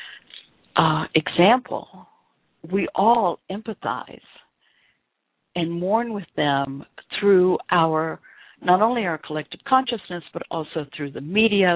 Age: 60-79